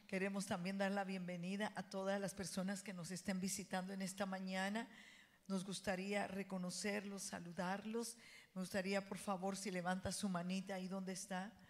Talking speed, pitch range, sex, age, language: 160 wpm, 190-225 Hz, female, 50-69, Spanish